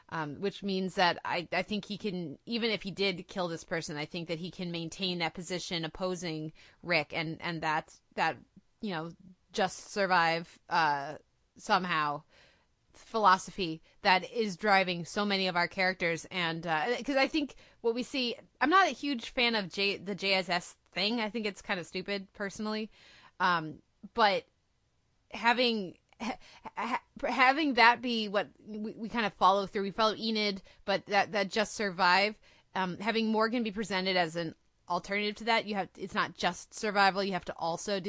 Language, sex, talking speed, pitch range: English, female, 175 wpm, 180-220 Hz